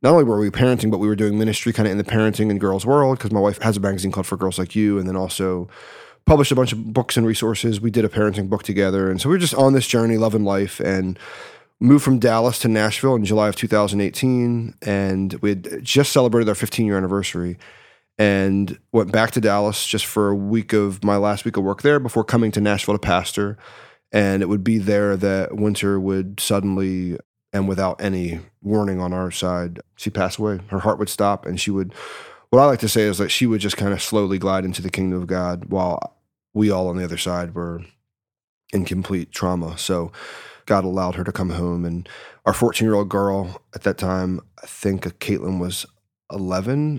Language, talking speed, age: English, 220 wpm, 30-49